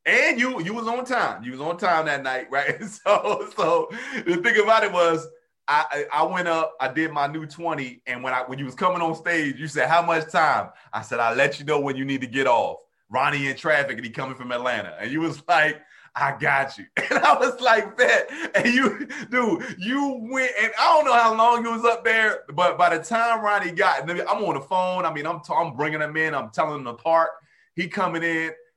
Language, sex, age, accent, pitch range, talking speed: English, male, 30-49, American, 135-210 Hz, 240 wpm